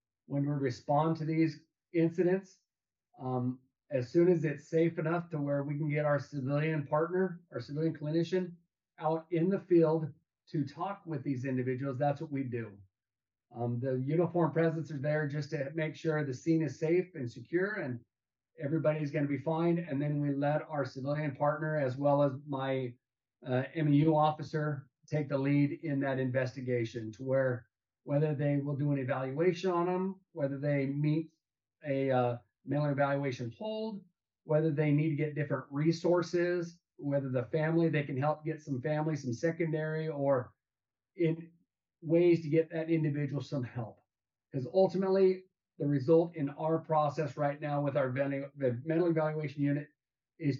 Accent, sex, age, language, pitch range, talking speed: American, male, 40-59, English, 135-160 Hz, 165 wpm